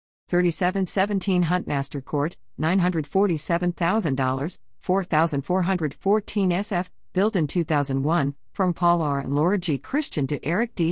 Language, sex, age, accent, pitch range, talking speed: English, female, 50-69, American, 155-200 Hz, 105 wpm